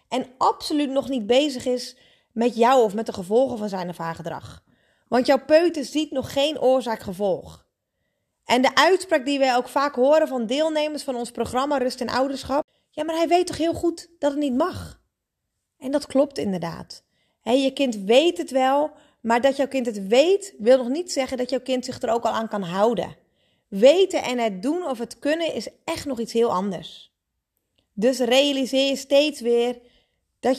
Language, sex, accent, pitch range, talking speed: Dutch, female, Dutch, 230-295 Hz, 195 wpm